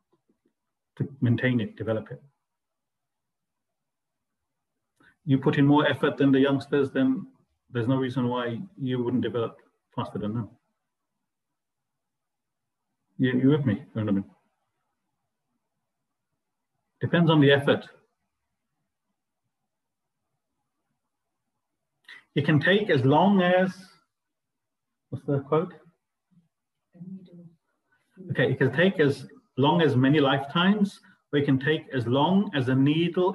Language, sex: English, male